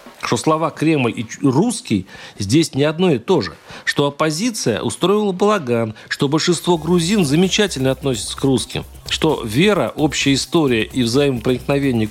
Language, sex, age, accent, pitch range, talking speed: Russian, male, 40-59, native, 110-170 Hz, 140 wpm